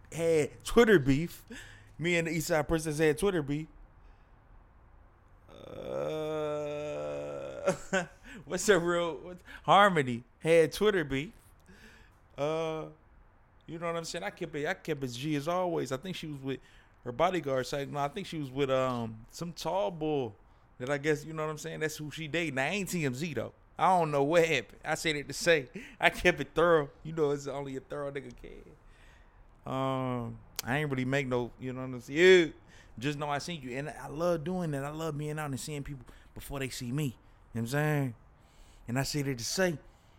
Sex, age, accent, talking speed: male, 20-39, American, 205 wpm